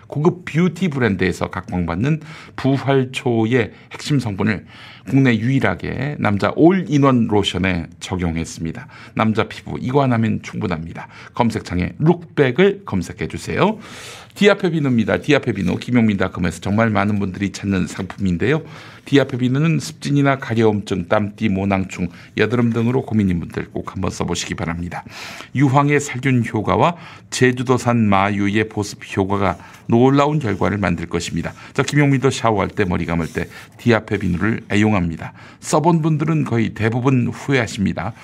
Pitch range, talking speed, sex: 95-135 Hz, 105 wpm, male